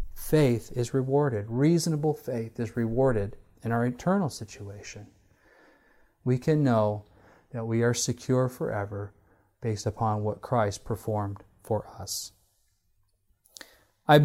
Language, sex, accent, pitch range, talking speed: English, male, American, 105-130 Hz, 115 wpm